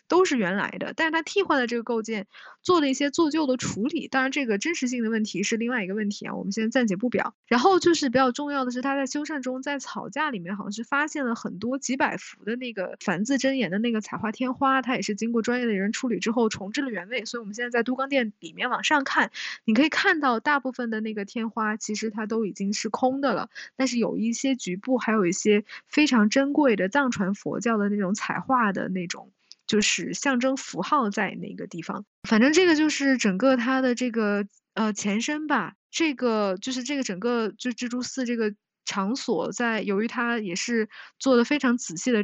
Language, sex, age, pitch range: Chinese, female, 10-29, 215-270 Hz